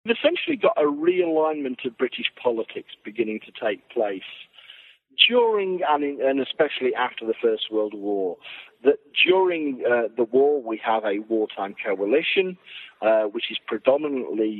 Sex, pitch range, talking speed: male, 115-165 Hz, 150 wpm